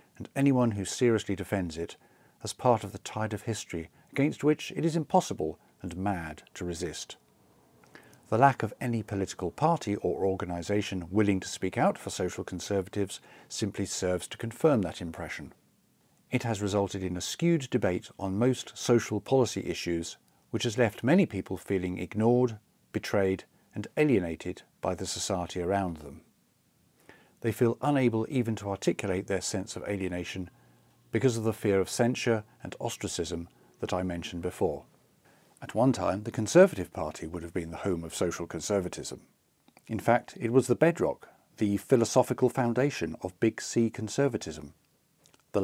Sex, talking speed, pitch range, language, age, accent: male, 155 wpm, 90-120 Hz, English, 50-69, British